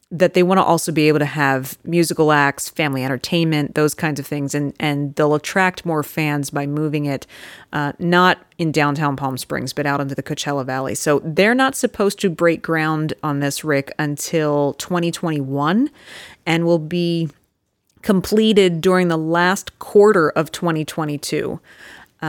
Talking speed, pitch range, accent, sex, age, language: 160 wpm, 145-175 Hz, American, female, 30-49, English